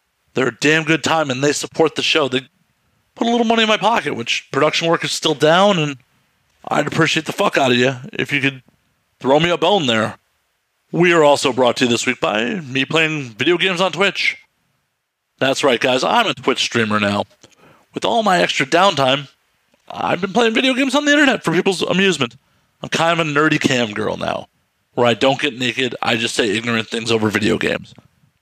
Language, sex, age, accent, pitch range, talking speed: English, male, 40-59, American, 130-170 Hz, 210 wpm